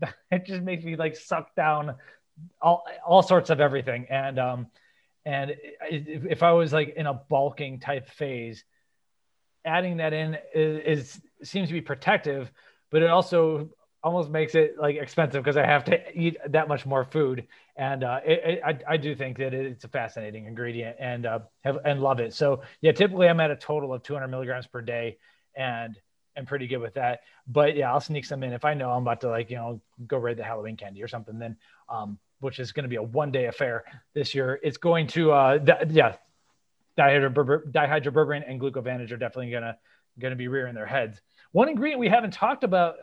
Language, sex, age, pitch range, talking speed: English, male, 30-49, 130-165 Hz, 200 wpm